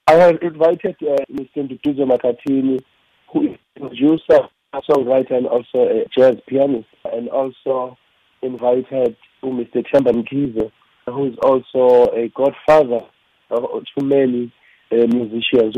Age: 40-59